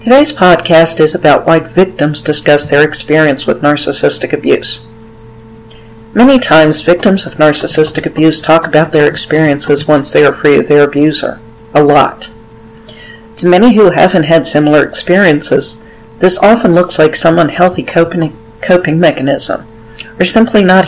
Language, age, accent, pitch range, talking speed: English, 50-69, American, 115-175 Hz, 140 wpm